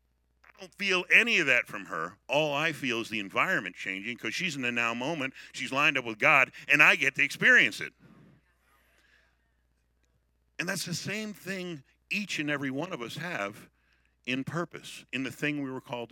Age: 50-69